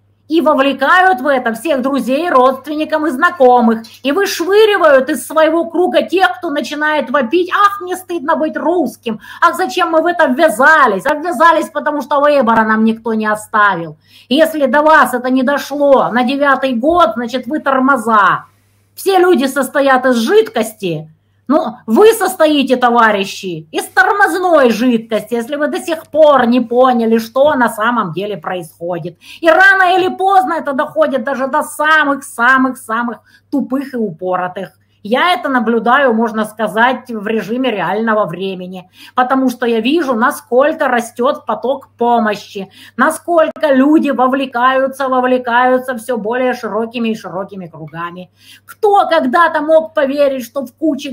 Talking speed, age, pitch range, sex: 140 wpm, 30-49, 230-315 Hz, female